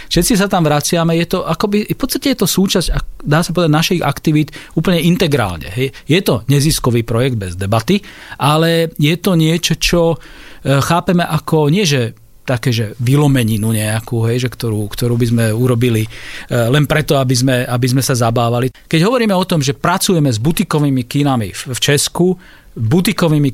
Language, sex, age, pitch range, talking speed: Slovak, male, 40-59, 130-170 Hz, 165 wpm